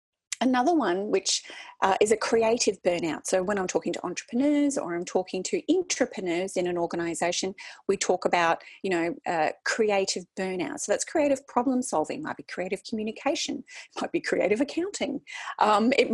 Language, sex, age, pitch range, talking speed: English, female, 30-49, 180-275 Hz, 165 wpm